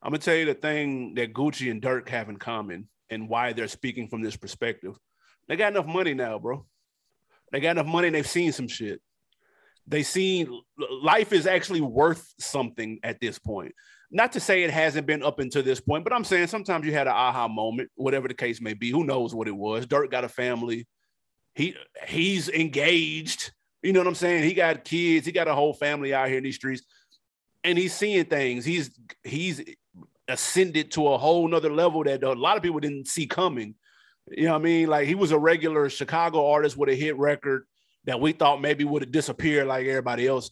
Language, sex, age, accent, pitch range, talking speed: English, male, 30-49, American, 130-175 Hz, 215 wpm